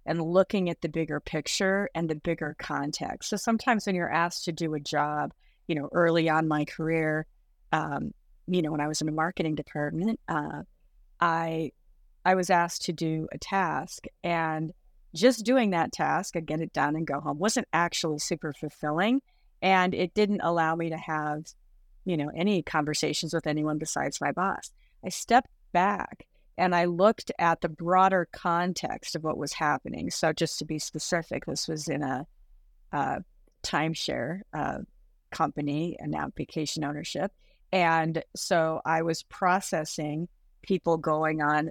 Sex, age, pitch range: female, 30-49, 155-185 Hz